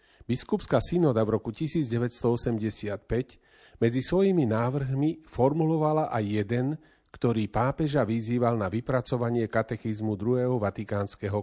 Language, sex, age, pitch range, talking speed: Slovak, male, 40-59, 110-135 Hz, 100 wpm